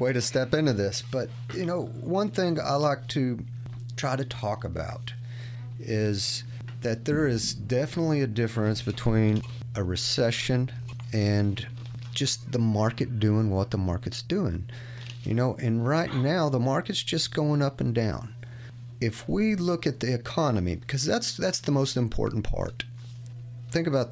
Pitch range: 115-135 Hz